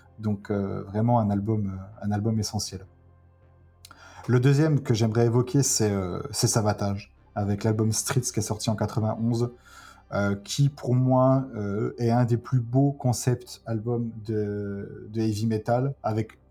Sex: male